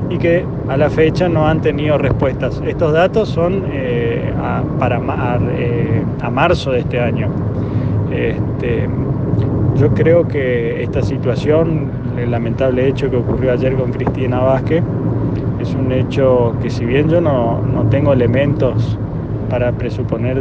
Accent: Argentinian